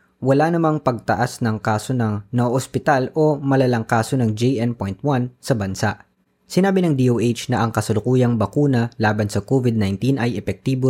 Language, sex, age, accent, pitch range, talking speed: Filipino, female, 20-39, native, 100-130 Hz, 145 wpm